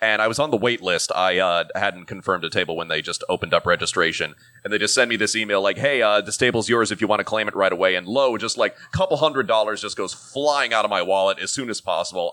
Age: 30-49